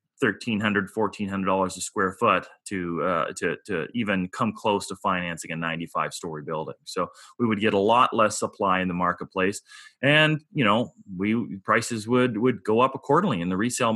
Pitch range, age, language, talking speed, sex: 95-115 Hz, 30-49, English, 195 wpm, male